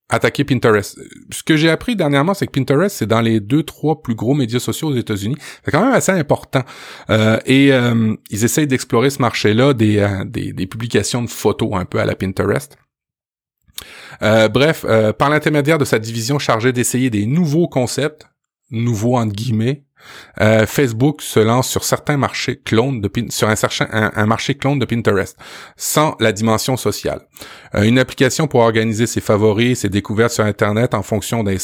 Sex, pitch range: male, 110-135 Hz